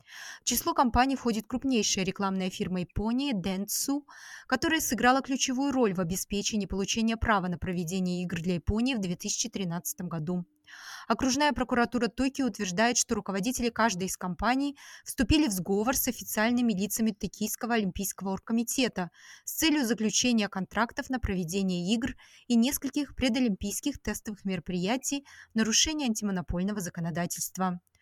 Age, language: 20-39, Russian